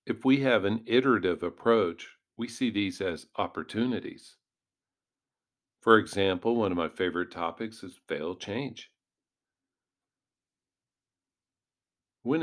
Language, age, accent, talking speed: English, 50-69, American, 105 wpm